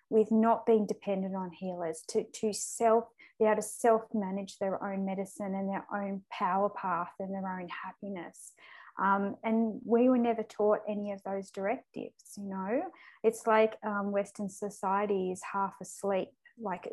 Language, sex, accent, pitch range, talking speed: English, female, Australian, 190-220 Hz, 160 wpm